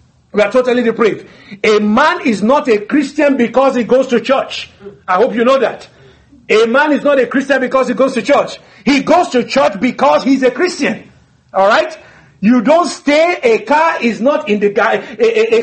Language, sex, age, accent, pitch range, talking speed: English, male, 50-69, Nigerian, 230-295 Hz, 195 wpm